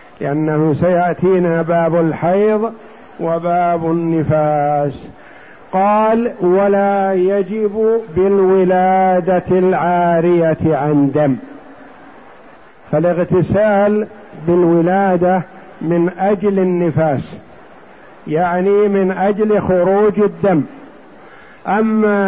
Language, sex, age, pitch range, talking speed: Arabic, male, 50-69, 170-205 Hz, 65 wpm